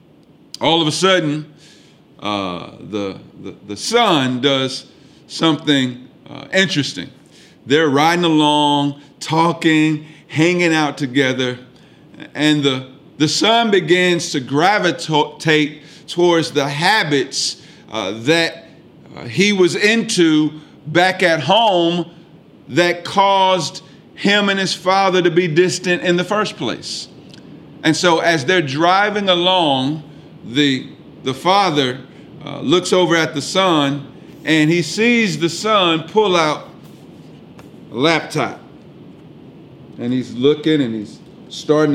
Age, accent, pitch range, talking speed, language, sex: 50-69, American, 140-175 Hz, 115 wpm, English, male